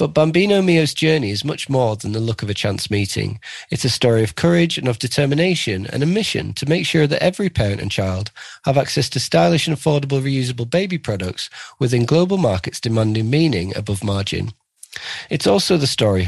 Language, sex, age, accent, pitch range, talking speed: English, male, 40-59, British, 110-160 Hz, 195 wpm